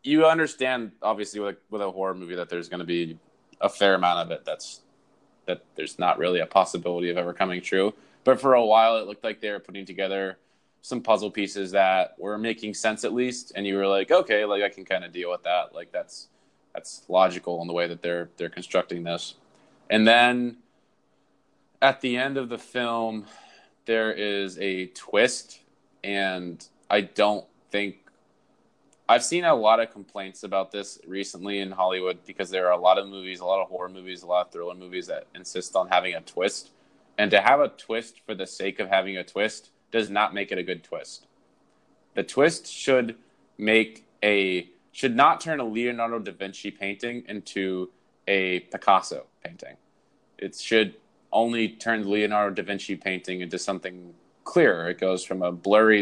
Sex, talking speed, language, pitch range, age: male, 190 wpm, English, 90-110 Hz, 20-39